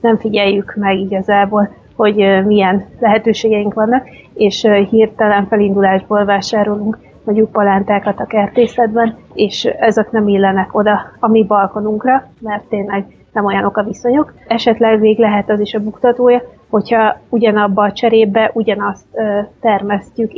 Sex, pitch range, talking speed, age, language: female, 205-225 Hz, 125 wpm, 30-49, Hungarian